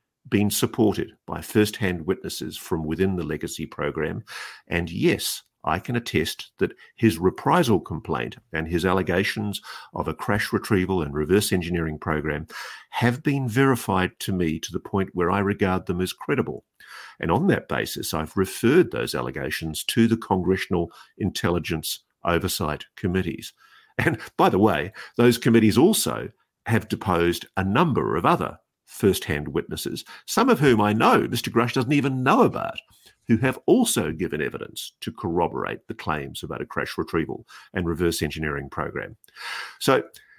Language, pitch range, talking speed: English, 85-115 Hz, 155 wpm